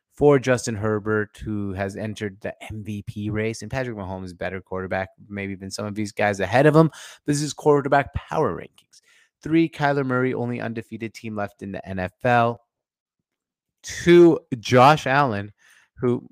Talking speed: 160 wpm